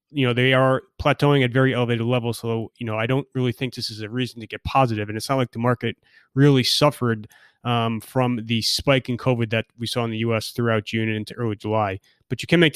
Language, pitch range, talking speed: English, 115-140 Hz, 250 wpm